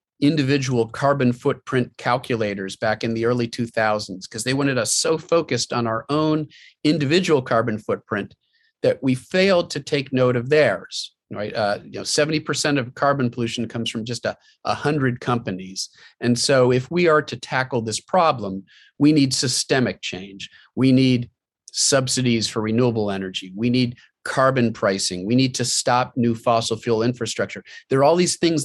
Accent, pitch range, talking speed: American, 115-140 Hz, 160 wpm